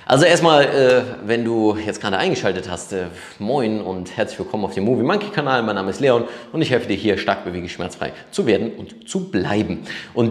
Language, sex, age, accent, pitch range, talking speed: German, male, 30-49, German, 105-160 Hz, 205 wpm